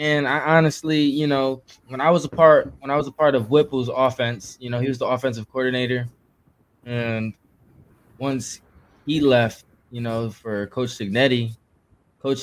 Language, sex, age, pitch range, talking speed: English, male, 20-39, 110-135 Hz, 170 wpm